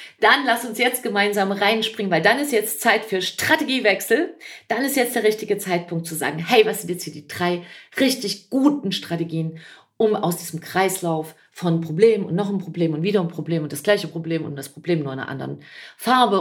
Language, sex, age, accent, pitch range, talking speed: German, female, 40-59, German, 165-230 Hz, 210 wpm